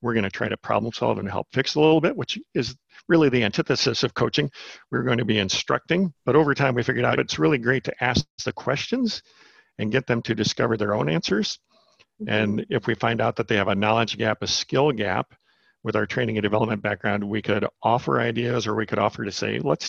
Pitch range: 105-120 Hz